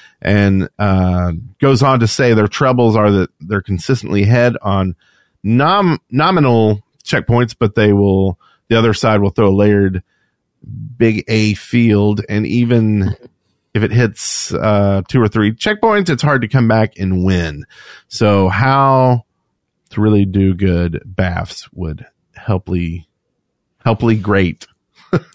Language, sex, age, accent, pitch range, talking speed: English, male, 40-59, American, 100-130 Hz, 135 wpm